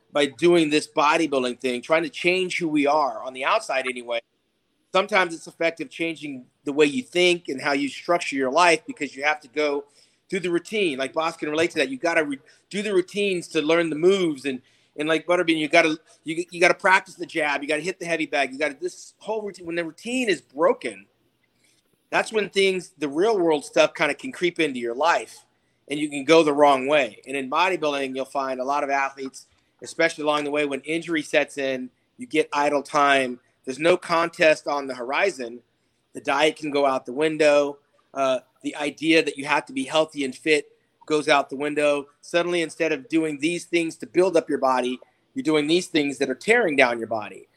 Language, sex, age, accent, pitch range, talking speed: English, male, 40-59, American, 145-175 Hz, 220 wpm